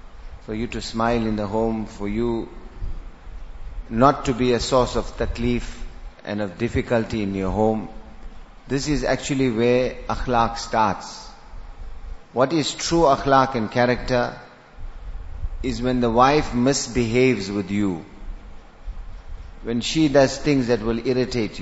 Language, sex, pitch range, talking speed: English, male, 100-130 Hz, 135 wpm